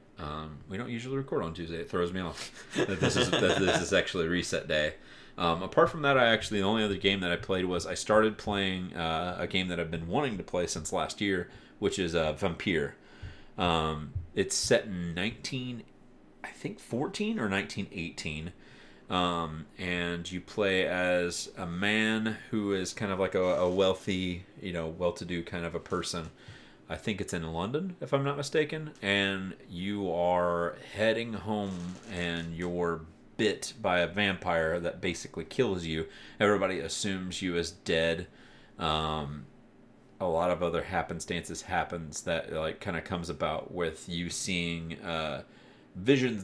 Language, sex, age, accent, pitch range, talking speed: English, male, 30-49, American, 85-100 Hz, 165 wpm